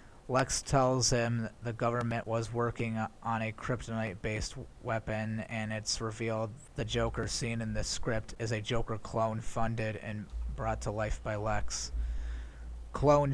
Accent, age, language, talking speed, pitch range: American, 30-49, English, 155 wpm, 110-115 Hz